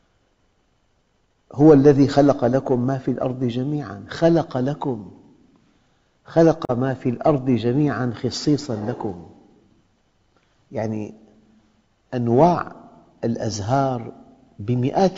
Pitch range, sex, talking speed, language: 110-140 Hz, male, 85 wpm, Arabic